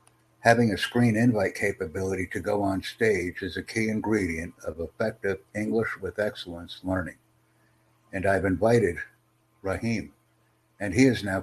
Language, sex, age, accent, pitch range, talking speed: English, male, 60-79, American, 90-115 Hz, 140 wpm